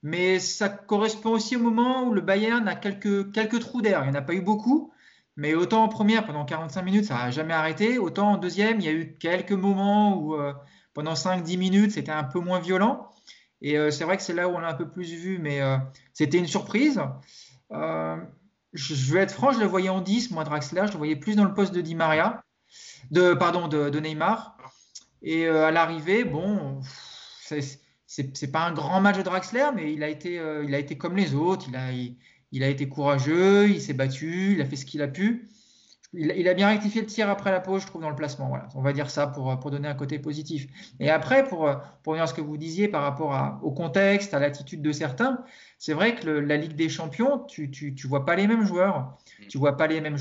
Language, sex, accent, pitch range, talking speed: French, male, French, 150-200 Hz, 250 wpm